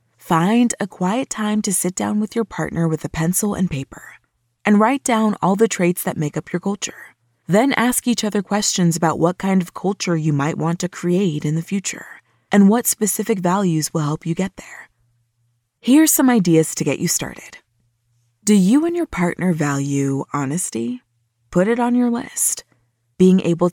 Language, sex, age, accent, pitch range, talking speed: English, female, 20-39, American, 160-210 Hz, 185 wpm